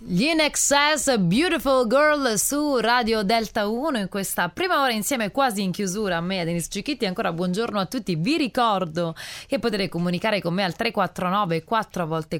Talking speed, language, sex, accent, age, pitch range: 175 wpm, Italian, female, native, 20-39, 165-225 Hz